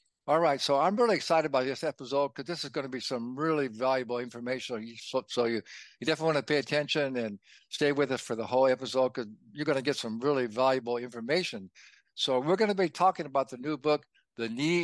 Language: English